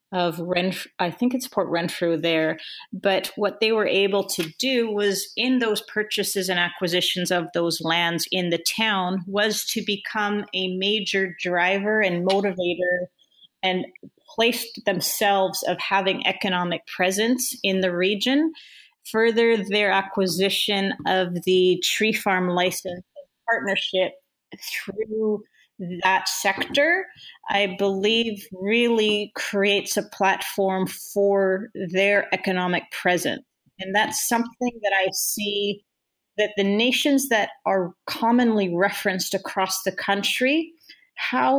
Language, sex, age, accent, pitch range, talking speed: English, female, 30-49, American, 185-220 Hz, 120 wpm